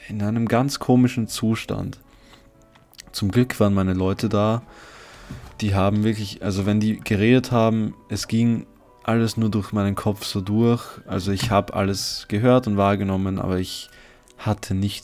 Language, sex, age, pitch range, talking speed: German, male, 20-39, 95-110 Hz, 155 wpm